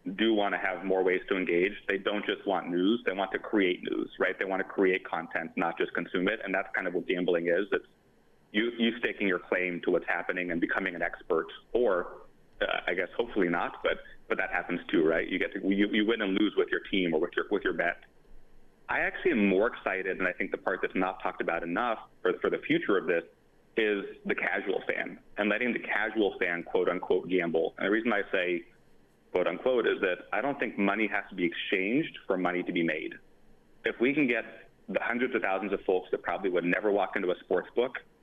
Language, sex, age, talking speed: English, male, 30-49, 235 wpm